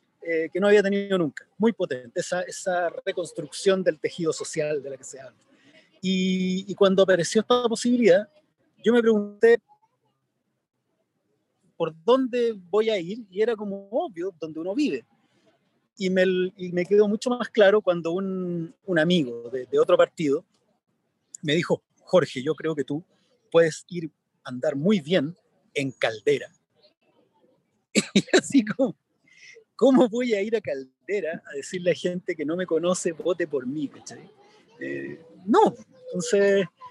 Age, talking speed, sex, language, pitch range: 30-49, 155 wpm, male, Spanish, 170-225 Hz